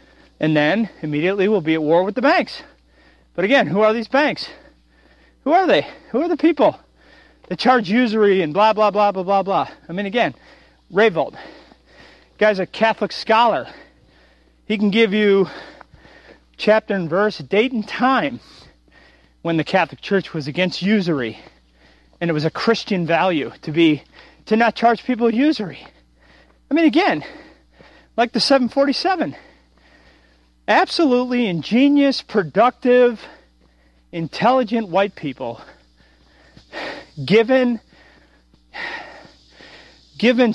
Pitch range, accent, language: 175-260 Hz, American, English